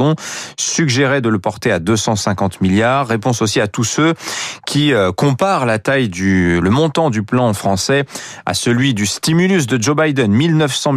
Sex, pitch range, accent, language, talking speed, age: male, 105-150 Hz, French, French, 170 wpm, 30-49